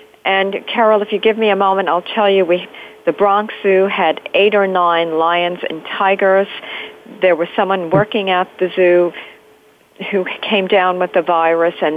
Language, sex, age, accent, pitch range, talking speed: English, female, 50-69, American, 175-210 Hz, 180 wpm